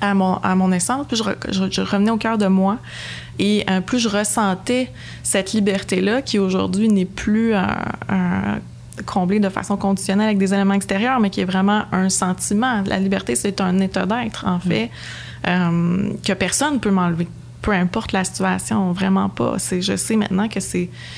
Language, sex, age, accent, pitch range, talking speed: French, female, 20-39, Canadian, 185-210 Hz, 195 wpm